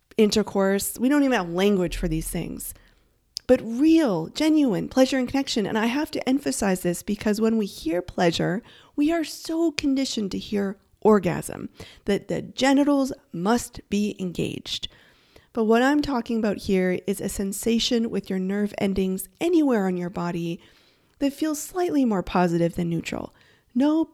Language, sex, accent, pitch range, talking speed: English, female, American, 190-250 Hz, 160 wpm